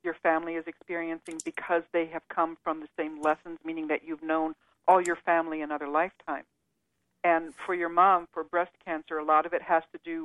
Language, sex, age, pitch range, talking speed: English, female, 50-69, 155-180 Hz, 205 wpm